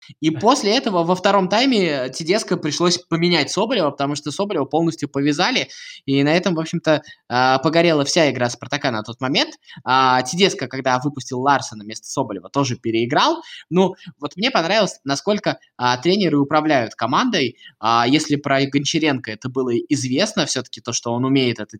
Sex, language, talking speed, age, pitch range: male, Russian, 155 wpm, 20-39, 125-170 Hz